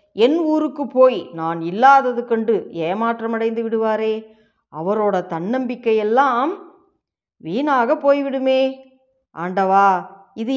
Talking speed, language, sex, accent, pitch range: 80 wpm, Tamil, female, native, 195-260 Hz